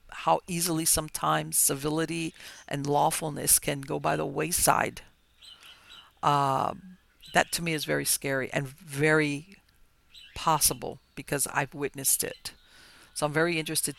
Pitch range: 140-155 Hz